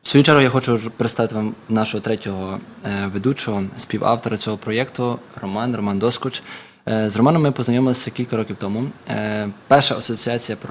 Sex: male